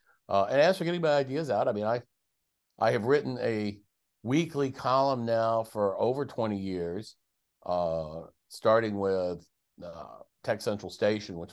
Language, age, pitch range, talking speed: English, 50-69, 95-120 Hz, 155 wpm